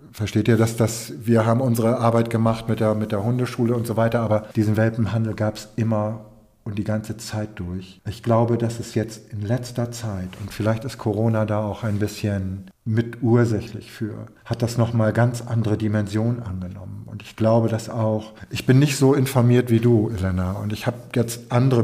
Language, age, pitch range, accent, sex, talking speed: German, 50-69, 105-120 Hz, German, male, 190 wpm